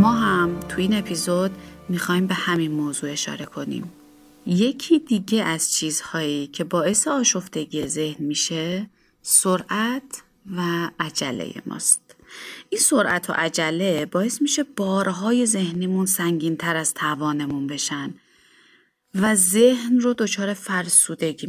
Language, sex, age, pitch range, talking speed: Persian, female, 30-49, 165-220 Hz, 115 wpm